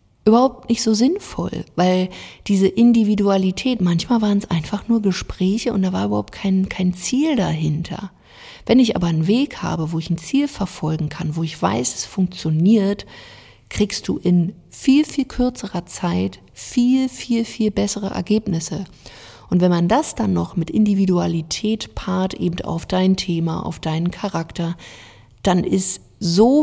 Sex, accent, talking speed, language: female, German, 155 wpm, German